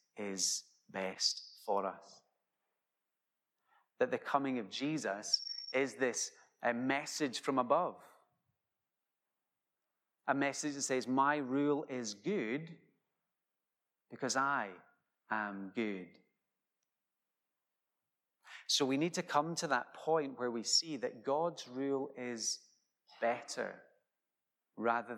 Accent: British